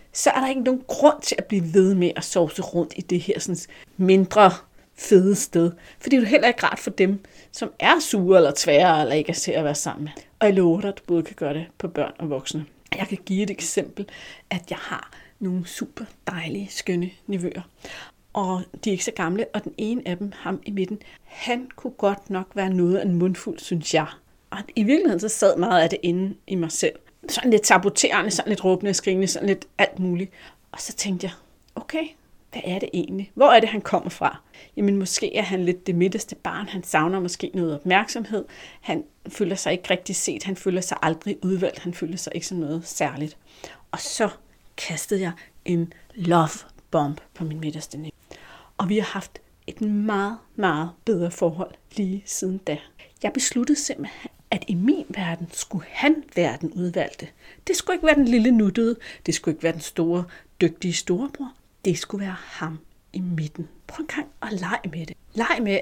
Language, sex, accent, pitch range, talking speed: Danish, female, native, 170-210 Hz, 205 wpm